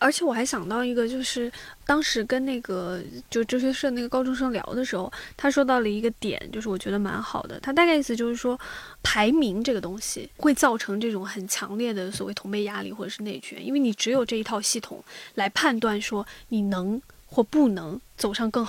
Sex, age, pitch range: female, 20-39, 215-275 Hz